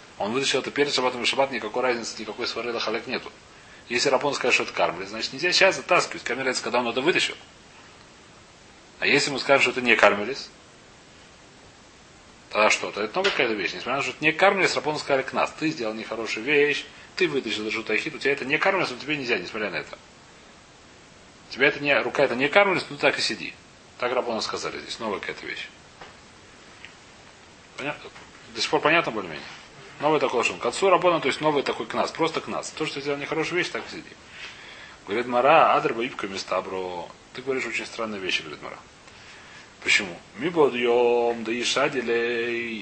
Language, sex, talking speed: Russian, male, 185 wpm